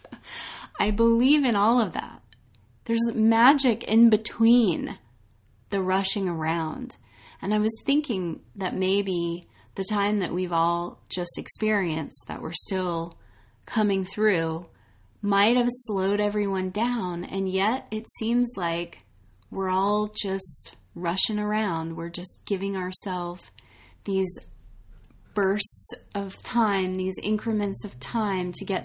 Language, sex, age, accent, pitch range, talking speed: English, female, 20-39, American, 170-205 Hz, 125 wpm